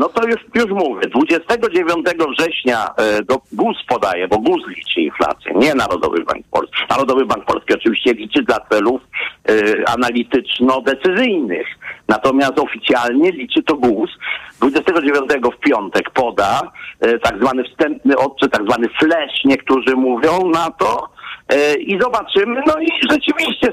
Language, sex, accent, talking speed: Polish, male, native, 135 wpm